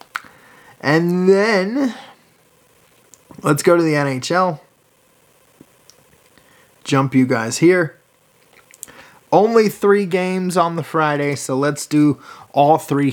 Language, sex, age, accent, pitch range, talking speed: English, male, 20-39, American, 135-185 Hz, 100 wpm